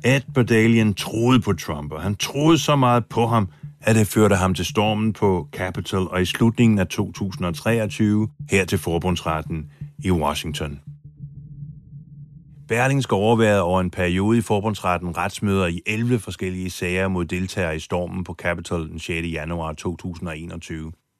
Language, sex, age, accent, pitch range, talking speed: Danish, male, 30-49, native, 85-115 Hz, 145 wpm